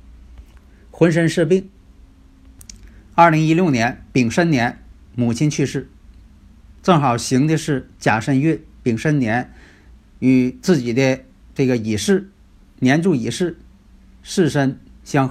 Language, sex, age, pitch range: Chinese, male, 50-69, 100-160 Hz